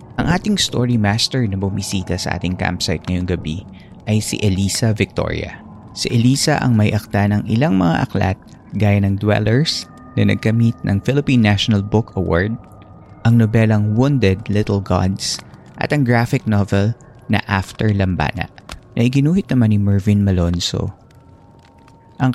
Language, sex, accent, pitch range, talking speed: Filipino, male, native, 95-120 Hz, 140 wpm